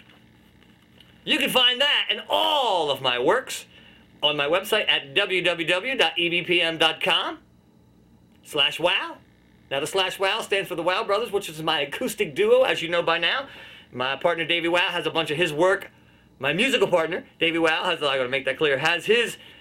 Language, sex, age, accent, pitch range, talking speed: English, male, 40-59, American, 145-200 Hz, 180 wpm